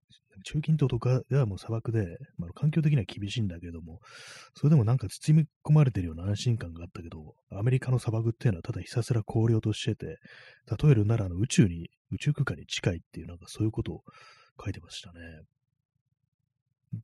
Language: Japanese